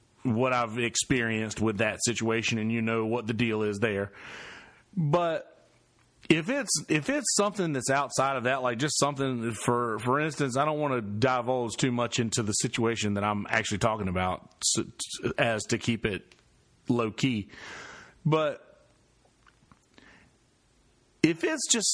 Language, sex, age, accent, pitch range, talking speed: English, male, 40-59, American, 115-135 Hz, 150 wpm